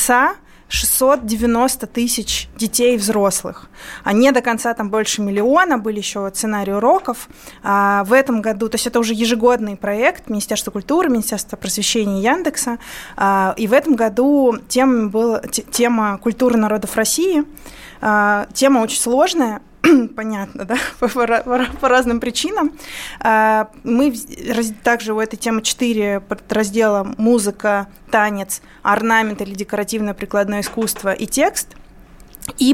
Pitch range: 210-245 Hz